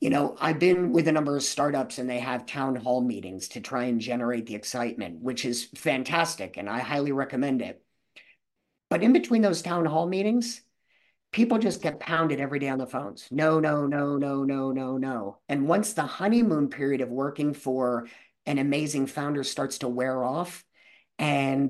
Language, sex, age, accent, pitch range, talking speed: English, male, 50-69, American, 125-150 Hz, 190 wpm